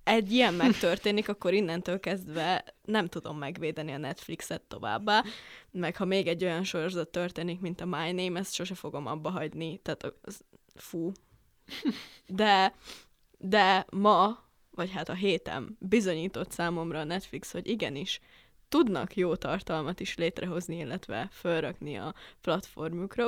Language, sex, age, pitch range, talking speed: Hungarian, female, 20-39, 170-210 Hz, 135 wpm